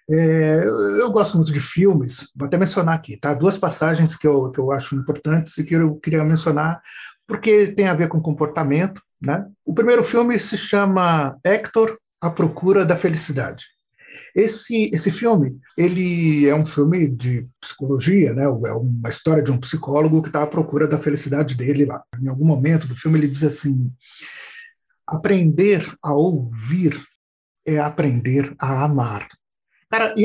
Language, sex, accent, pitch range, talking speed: Portuguese, male, Brazilian, 145-195 Hz, 155 wpm